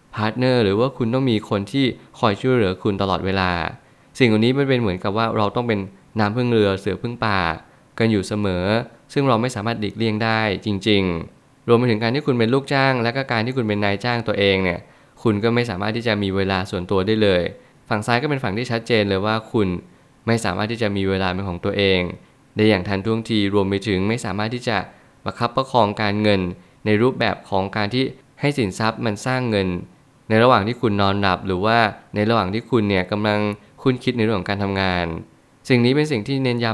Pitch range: 100-120 Hz